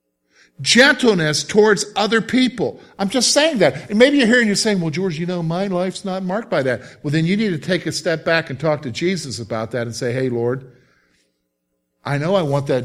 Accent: American